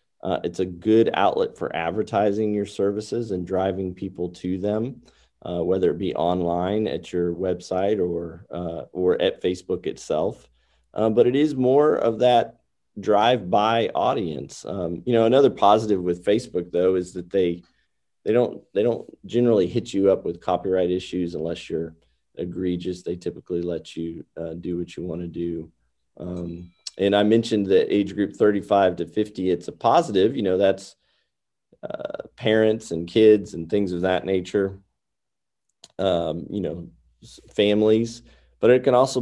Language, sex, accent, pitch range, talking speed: English, male, American, 85-105 Hz, 160 wpm